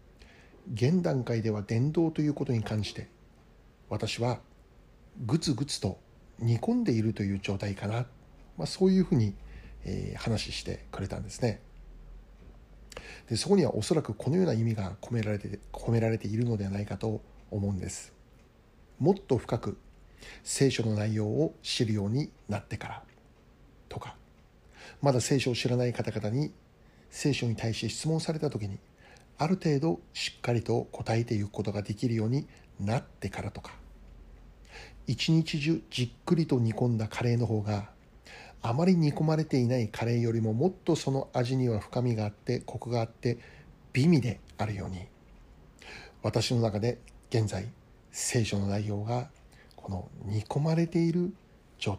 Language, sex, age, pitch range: Japanese, male, 60-79, 105-135 Hz